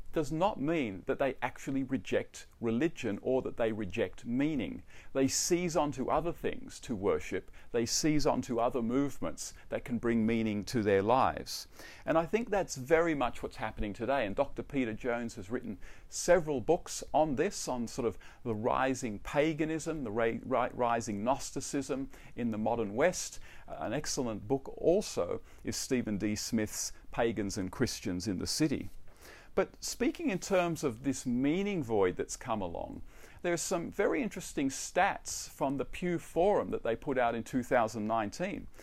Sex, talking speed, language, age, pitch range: male, 160 wpm, English, 50-69, 115-165 Hz